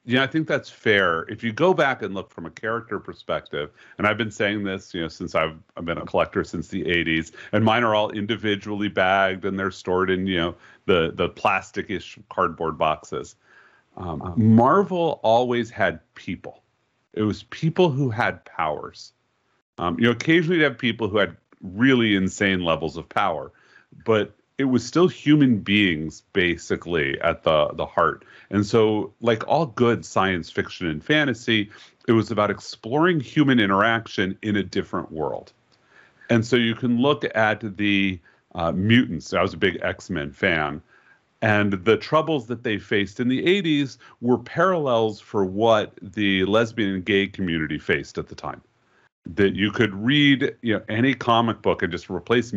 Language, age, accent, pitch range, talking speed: English, 40-59, American, 95-120 Hz, 175 wpm